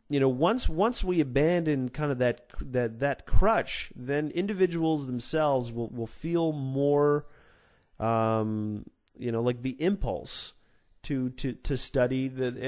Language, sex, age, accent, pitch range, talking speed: English, male, 30-49, American, 120-155 Hz, 140 wpm